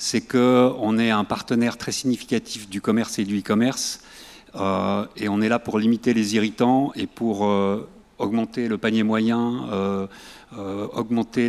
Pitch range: 110-135 Hz